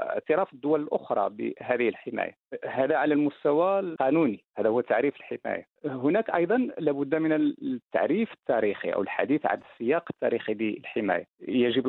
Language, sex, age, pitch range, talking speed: Arabic, male, 40-59, 115-165 Hz, 130 wpm